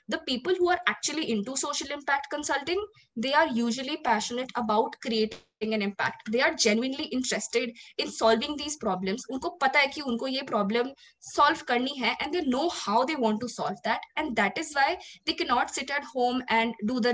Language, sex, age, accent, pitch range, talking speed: Hindi, female, 20-39, native, 220-275 Hz, 195 wpm